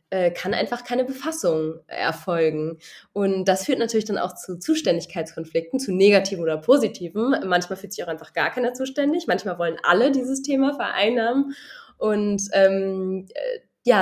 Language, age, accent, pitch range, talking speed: German, 20-39, German, 170-225 Hz, 145 wpm